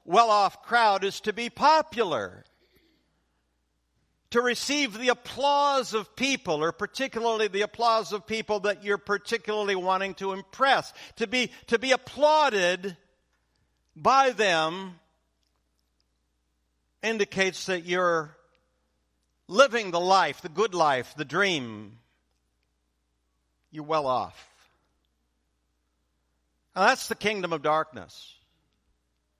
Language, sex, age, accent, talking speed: English, male, 60-79, American, 100 wpm